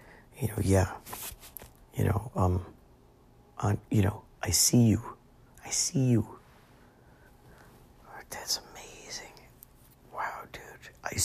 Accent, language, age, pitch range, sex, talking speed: American, English, 50-69, 90-110 Hz, male, 110 wpm